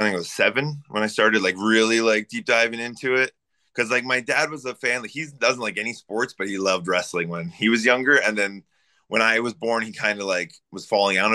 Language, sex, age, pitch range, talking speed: English, male, 20-39, 95-115 Hz, 260 wpm